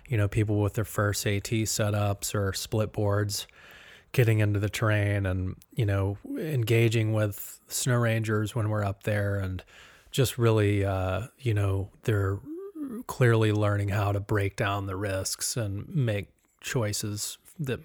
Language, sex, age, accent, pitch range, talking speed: English, male, 30-49, American, 100-115 Hz, 150 wpm